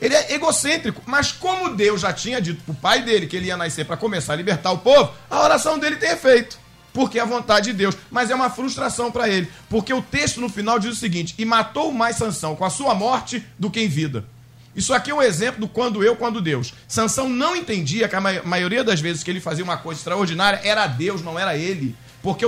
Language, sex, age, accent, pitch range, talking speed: Portuguese, male, 50-69, Brazilian, 170-235 Hz, 240 wpm